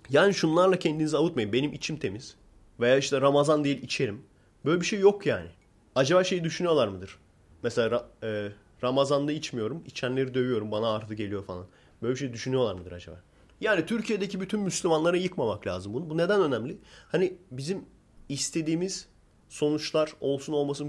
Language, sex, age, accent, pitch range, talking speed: Turkish, male, 30-49, native, 110-155 Hz, 150 wpm